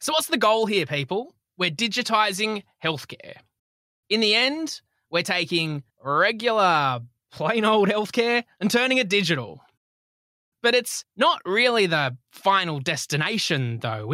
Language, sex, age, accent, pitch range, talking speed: English, male, 20-39, Australian, 135-205 Hz, 125 wpm